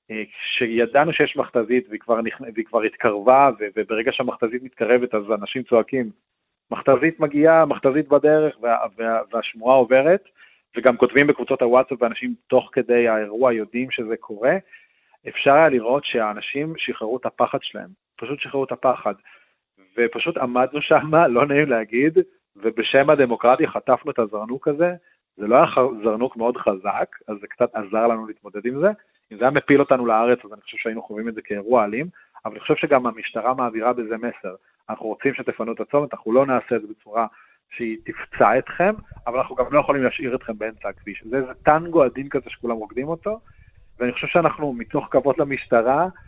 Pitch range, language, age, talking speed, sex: 115-145 Hz, Hebrew, 40-59, 170 wpm, male